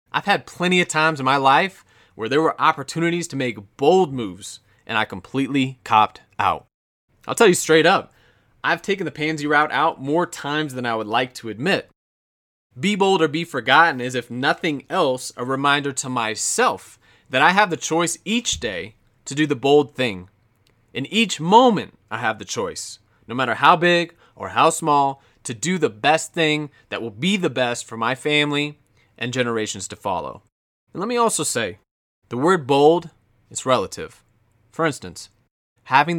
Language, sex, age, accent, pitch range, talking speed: English, male, 20-39, American, 115-160 Hz, 180 wpm